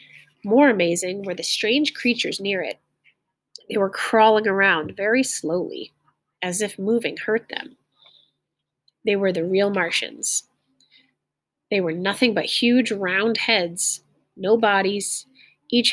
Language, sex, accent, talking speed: English, female, American, 130 wpm